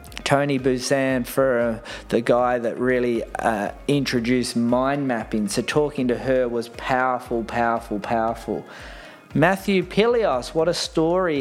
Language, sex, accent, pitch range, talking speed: English, male, Australian, 120-150 Hz, 130 wpm